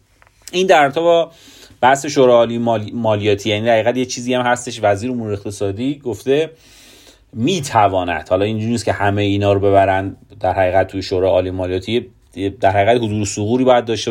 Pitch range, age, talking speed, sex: 100-140 Hz, 30-49, 170 wpm, male